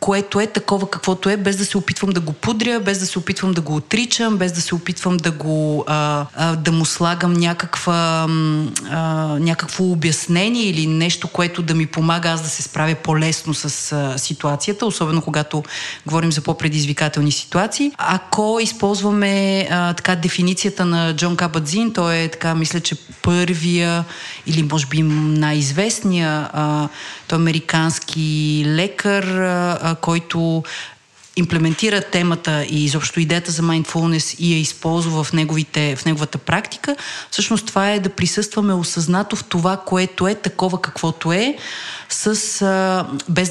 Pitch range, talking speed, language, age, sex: 160-190 Hz, 140 wpm, Bulgarian, 30-49, female